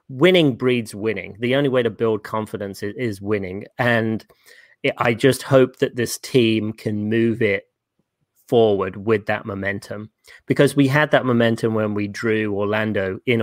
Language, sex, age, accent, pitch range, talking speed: English, male, 30-49, British, 105-130 Hz, 165 wpm